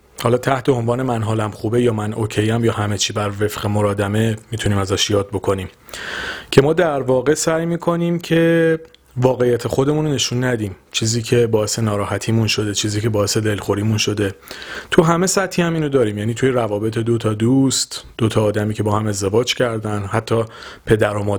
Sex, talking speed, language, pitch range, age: male, 180 wpm, Persian, 110-140 Hz, 40-59